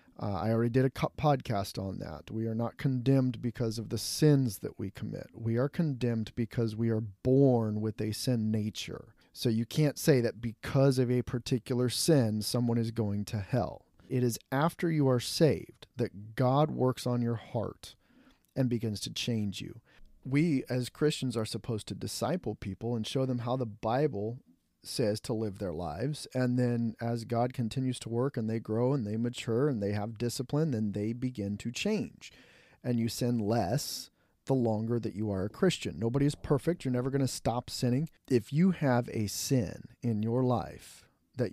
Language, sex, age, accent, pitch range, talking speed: English, male, 40-59, American, 110-135 Hz, 190 wpm